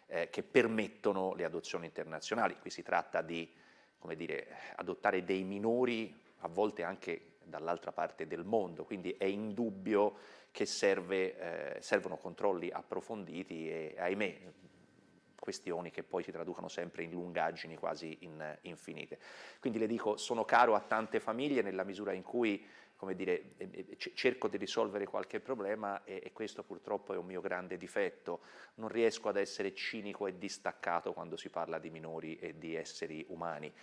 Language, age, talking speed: Italian, 30-49, 145 wpm